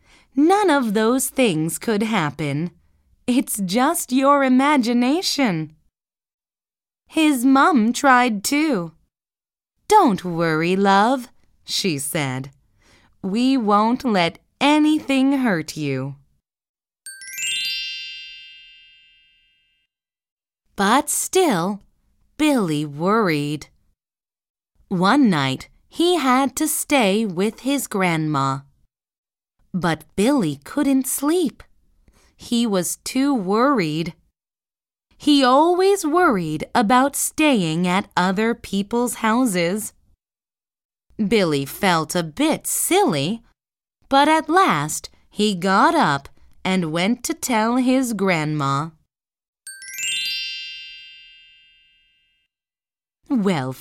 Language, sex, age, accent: Chinese, female, 30-49, American